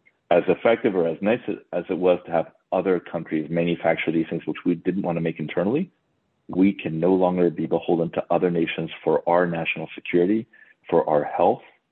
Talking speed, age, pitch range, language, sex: 190 wpm, 40-59, 80-95 Hz, English, male